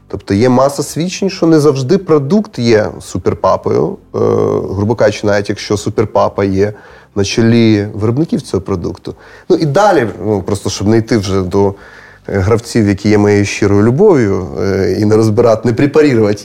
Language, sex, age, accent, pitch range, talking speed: Ukrainian, male, 30-49, native, 105-140 Hz, 160 wpm